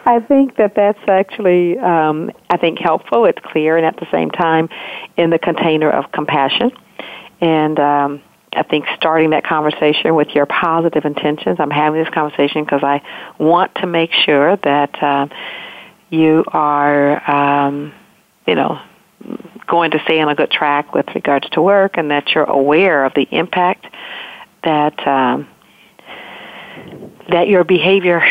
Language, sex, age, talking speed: English, female, 50-69, 155 wpm